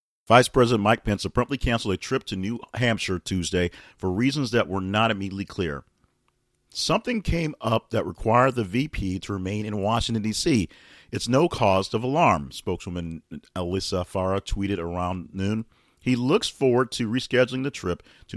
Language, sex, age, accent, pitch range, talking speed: English, male, 40-59, American, 90-115 Hz, 165 wpm